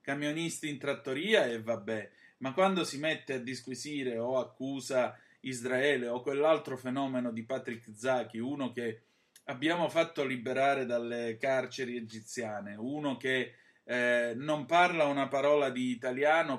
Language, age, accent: Italian, 30-49, native